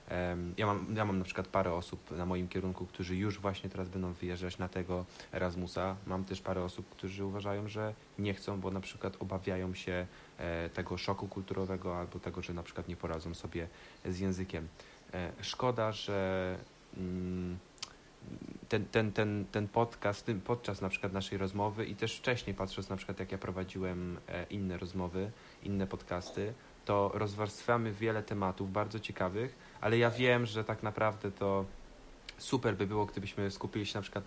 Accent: native